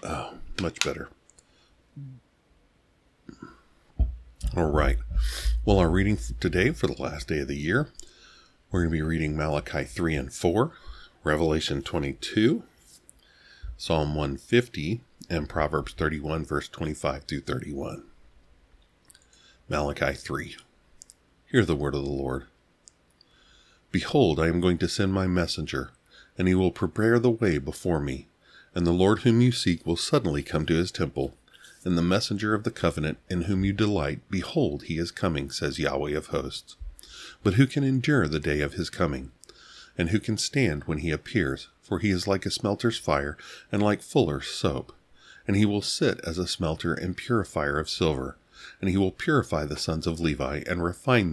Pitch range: 75-100 Hz